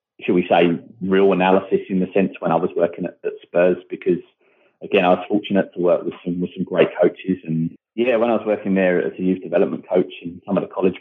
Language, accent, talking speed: English, British, 240 wpm